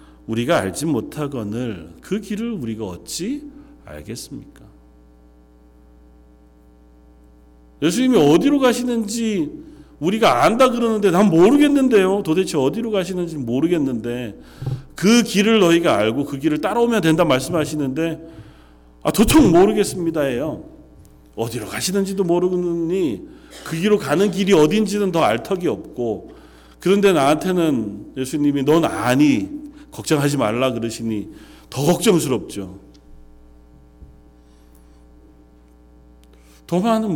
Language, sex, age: Korean, male, 40-59